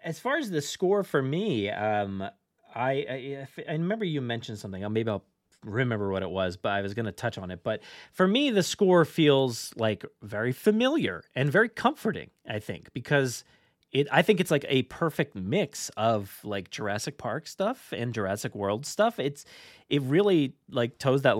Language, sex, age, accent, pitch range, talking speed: English, male, 30-49, American, 105-155 Hz, 190 wpm